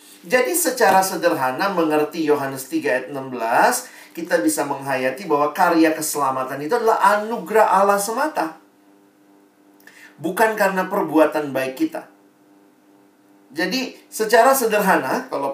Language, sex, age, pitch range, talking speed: Indonesian, male, 40-59, 130-190 Hz, 110 wpm